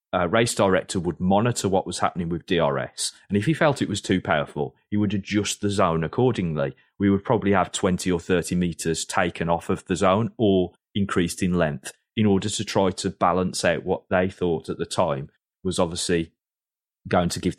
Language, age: English, 30-49